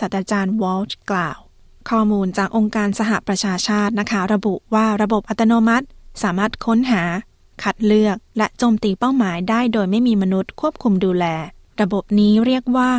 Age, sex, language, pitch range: 30-49, female, Thai, 185-220 Hz